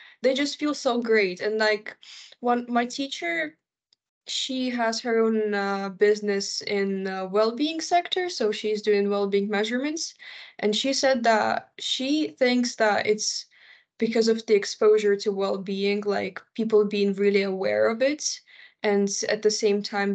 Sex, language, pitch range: female, Finnish, 195-235 Hz